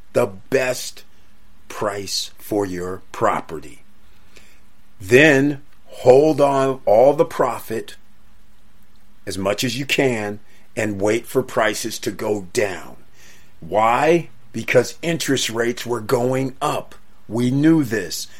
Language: English